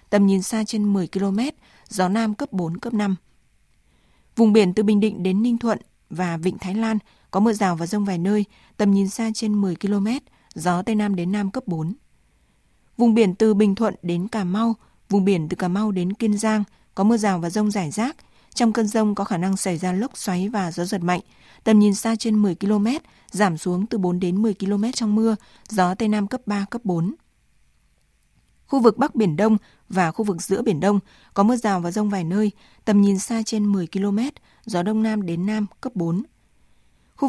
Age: 20-39